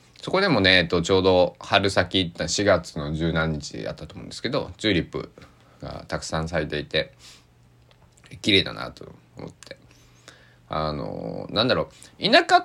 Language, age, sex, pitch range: Japanese, 20-39, male, 75-110 Hz